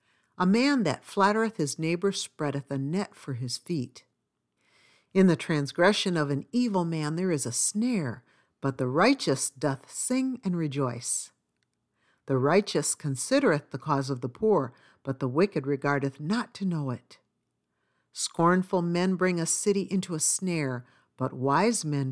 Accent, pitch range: American, 135-195 Hz